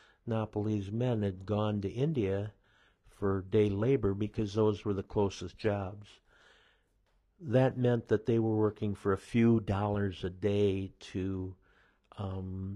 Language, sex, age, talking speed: English, male, 50-69, 135 wpm